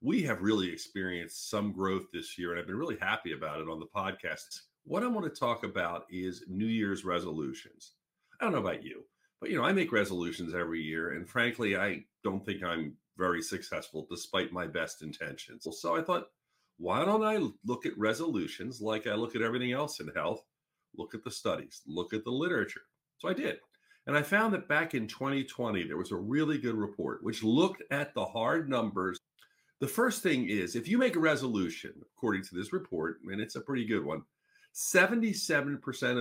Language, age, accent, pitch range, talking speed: English, 50-69, American, 95-155 Hz, 195 wpm